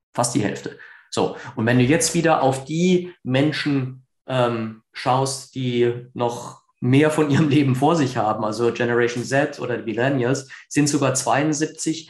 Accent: German